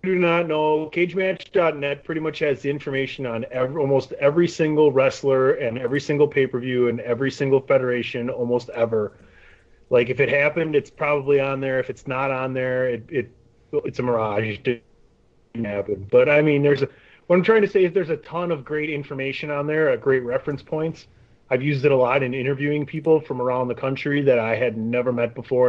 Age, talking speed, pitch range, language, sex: 30-49, 200 wpm, 125-155 Hz, English, male